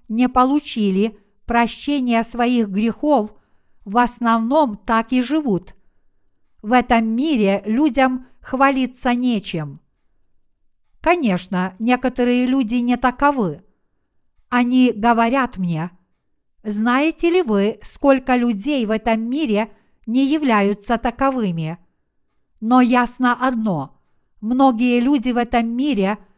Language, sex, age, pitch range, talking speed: Russian, female, 50-69, 220-255 Hz, 100 wpm